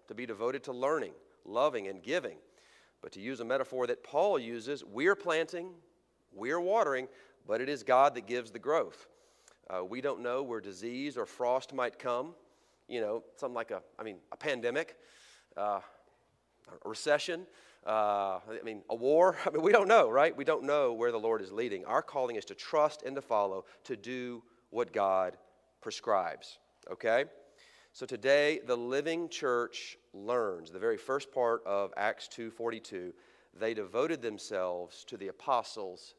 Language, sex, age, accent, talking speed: English, male, 40-59, American, 170 wpm